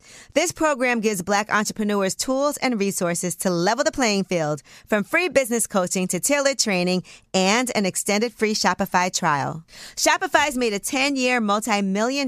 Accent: American